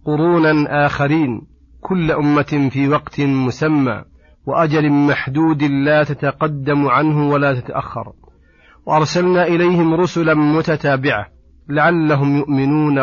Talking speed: 90 wpm